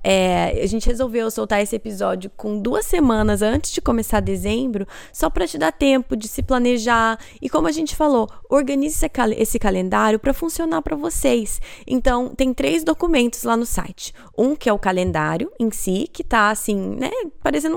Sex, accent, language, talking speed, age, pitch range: female, Brazilian, Portuguese, 185 wpm, 20-39, 205-270 Hz